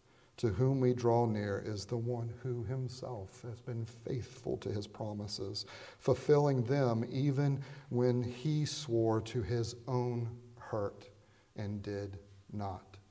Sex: male